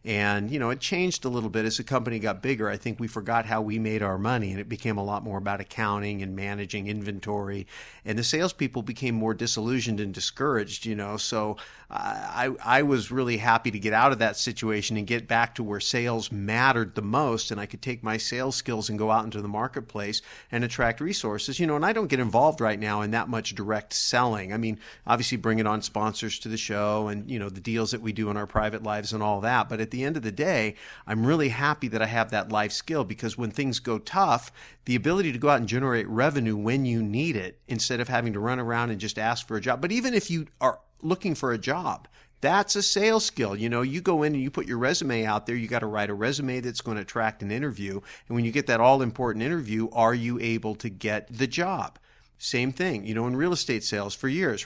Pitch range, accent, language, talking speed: 105-130 Hz, American, English, 250 wpm